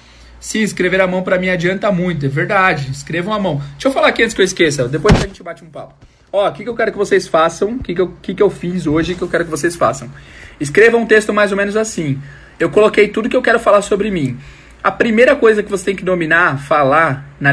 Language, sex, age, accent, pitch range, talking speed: Portuguese, male, 20-39, Brazilian, 150-205 Hz, 260 wpm